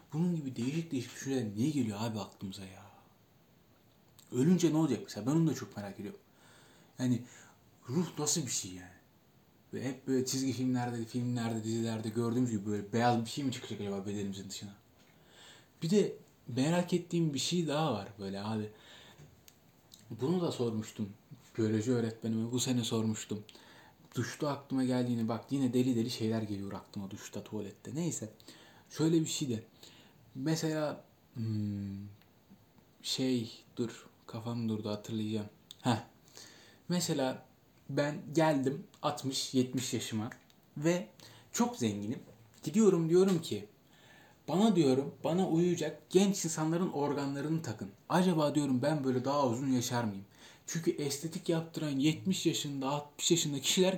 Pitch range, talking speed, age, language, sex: 110-155 Hz, 135 wpm, 30-49, Turkish, male